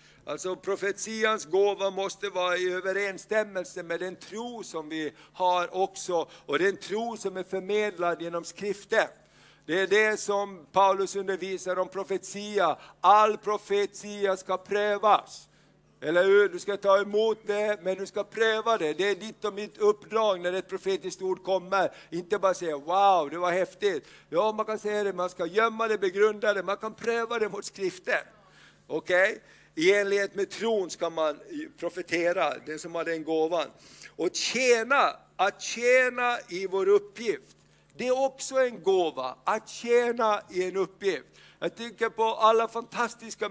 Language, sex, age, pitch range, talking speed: Swedish, male, 50-69, 185-220 Hz, 160 wpm